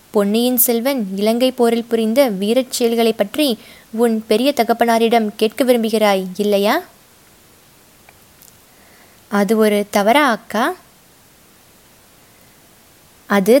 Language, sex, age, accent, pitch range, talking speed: Tamil, female, 20-39, native, 215-260 Hz, 60 wpm